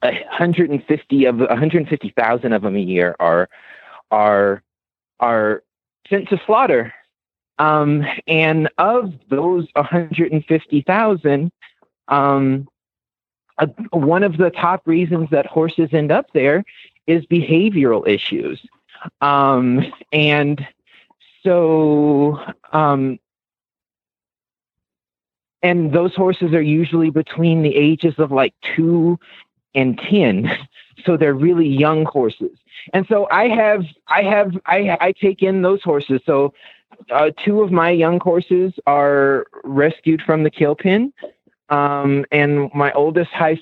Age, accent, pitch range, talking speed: 30-49, American, 145-175 Hz, 125 wpm